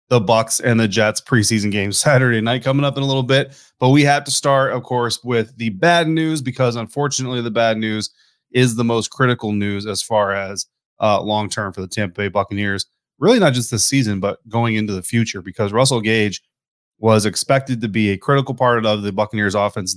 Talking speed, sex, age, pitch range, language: 215 wpm, male, 20-39, 100-120 Hz, English